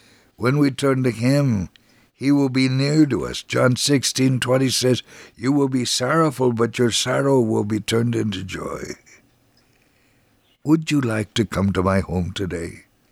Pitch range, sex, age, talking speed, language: 95-125 Hz, male, 60-79, 165 wpm, English